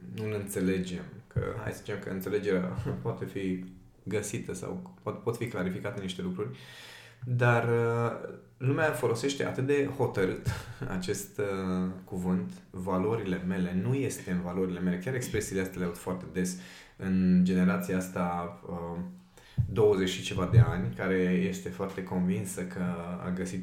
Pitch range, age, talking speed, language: 90-115 Hz, 20-39, 145 wpm, Romanian